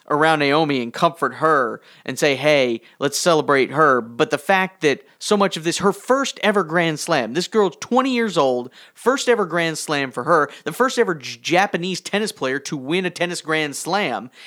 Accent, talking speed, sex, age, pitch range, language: American, 195 wpm, male, 40-59, 150-205 Hz, English